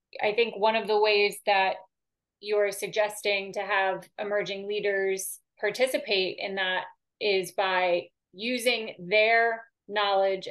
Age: 30-49